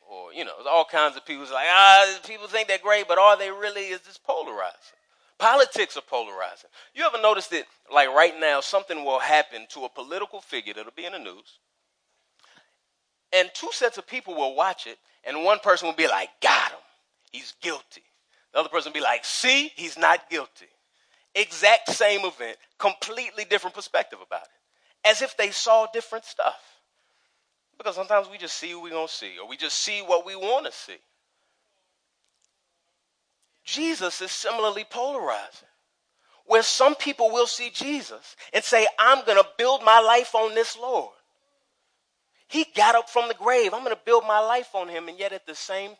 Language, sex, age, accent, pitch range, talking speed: English, male, 30-49, American, 185-235 Hz, 190 wpm